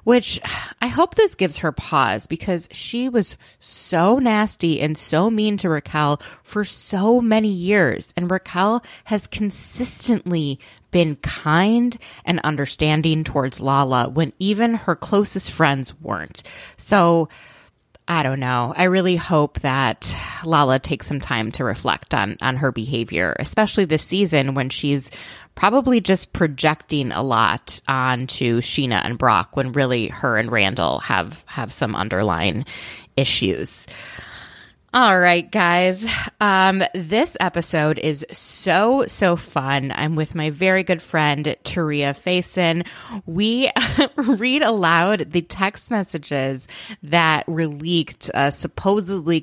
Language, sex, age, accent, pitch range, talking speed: English, female, 20-39, American, 140-195 Hz, 130 wpm